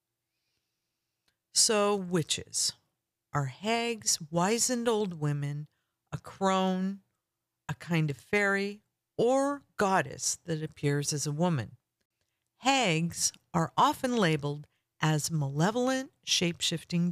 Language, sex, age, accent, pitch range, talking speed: English, female, 50-69, American, 140-195 Hz, 95 wpm